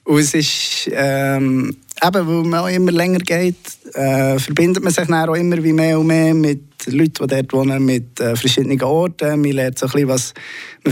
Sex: male